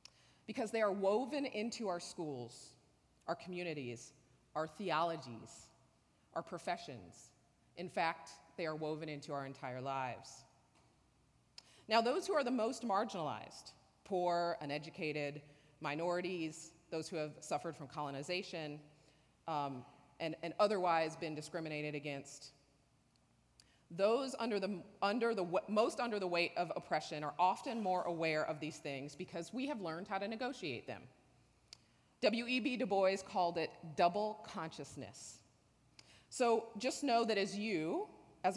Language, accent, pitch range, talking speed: English, American, 150-215 Hz, 130 wpm